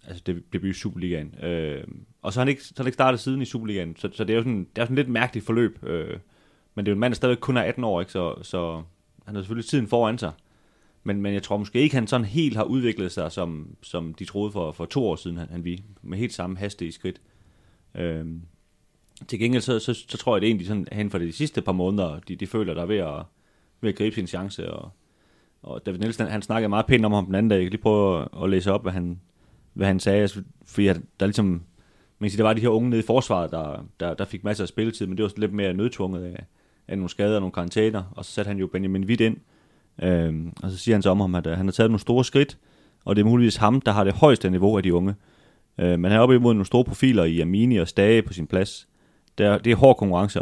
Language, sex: Danish, male